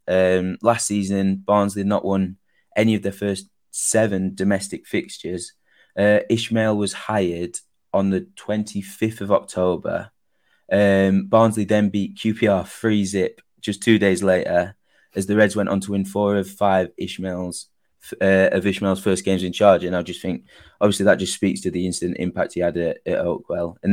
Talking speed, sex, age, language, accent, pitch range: 170 wpm, male, 20-39, English, British, 95-105 Hz